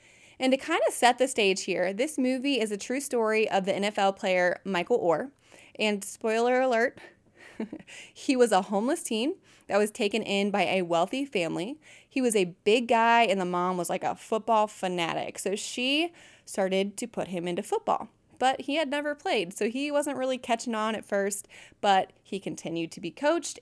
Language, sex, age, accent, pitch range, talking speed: English, female, 20-39, American, 190-255 Hz, 195 wpm